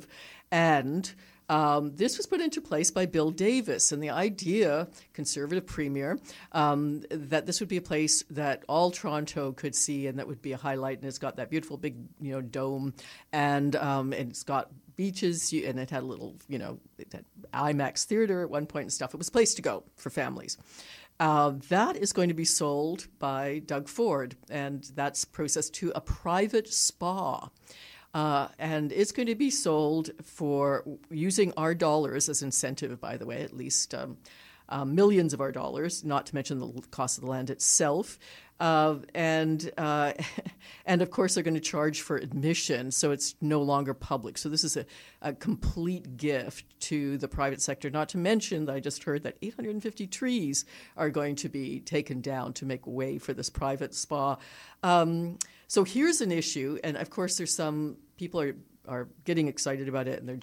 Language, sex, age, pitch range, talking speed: English, female, 60-79, 140-170 Hz, 190 wpm